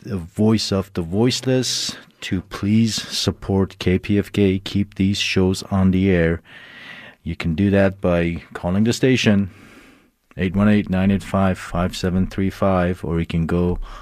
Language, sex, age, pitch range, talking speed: English, male, 40-59, 90-105 Hz, 105 wpm